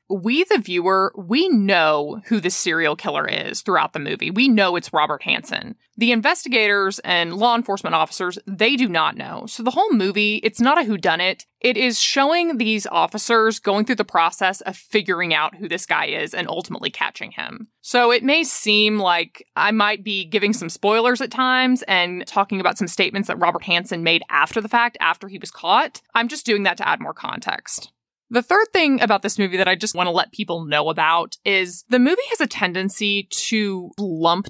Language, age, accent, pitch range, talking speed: English, 20-39, American, 180-225 Hz, 200 wpm